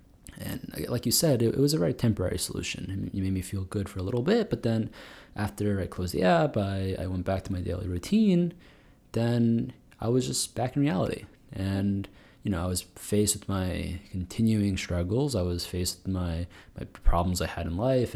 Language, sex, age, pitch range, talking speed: English, male, 20-39, 95-125 Hz, 200 wpm